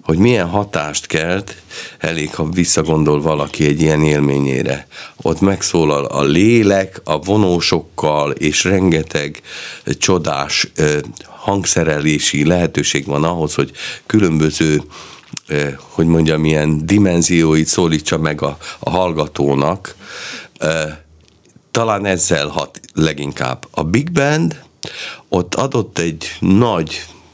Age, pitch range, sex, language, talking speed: 50-69, 75-90 Hz, male, Hungarian, 100 wpm